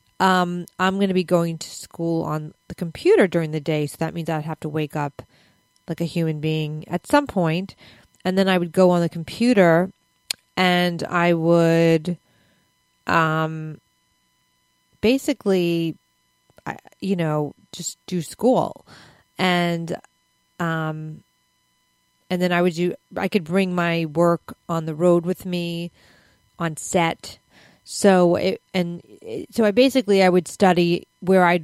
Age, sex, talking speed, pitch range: 30-49, female, 145 wpm, 155-180 Hz